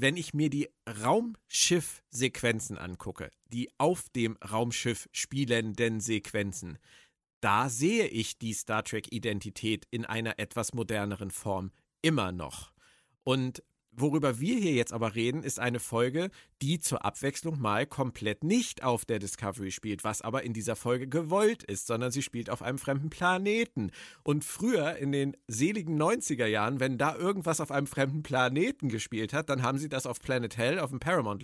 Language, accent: German, German